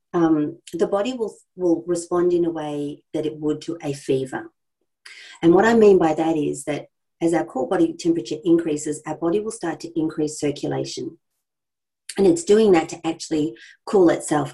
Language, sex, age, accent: English, female, 40-59, Australian